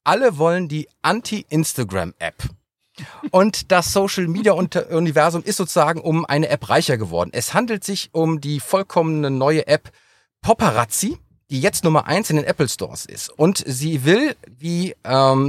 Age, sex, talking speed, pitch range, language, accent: 40-59, male, 140 wpm, 130-185 Hz, German, German